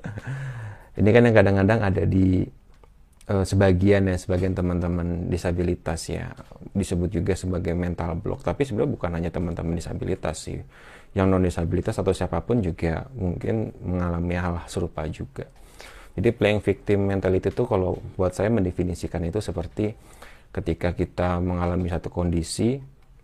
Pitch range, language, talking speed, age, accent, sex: 85-100 Hz, Indonesian, 130 wpm, 30-49, native, male